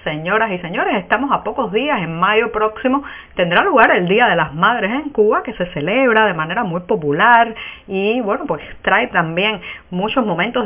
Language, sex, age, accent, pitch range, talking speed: Spanish, female, 40-59, American, 175-235 Hz, 185 wpm